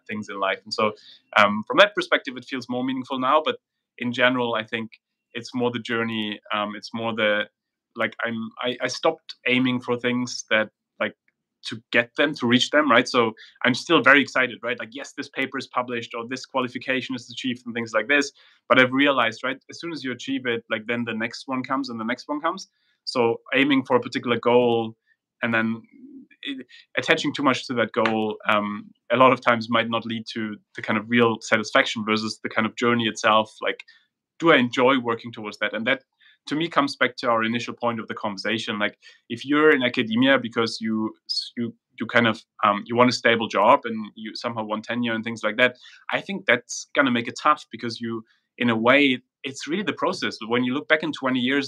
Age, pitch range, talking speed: 30-49, 115-130 Hz, 220 wpm